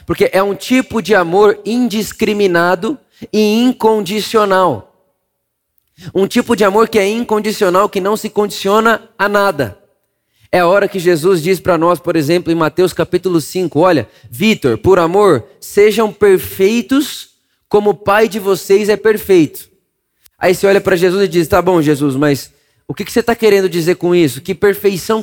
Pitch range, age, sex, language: 180-215 Hz, 20-39, male, Portuguese